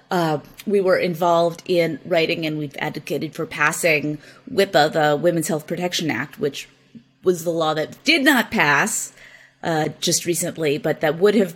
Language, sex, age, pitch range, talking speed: English, female, 30-49, 160-195 Hz, 165 wpm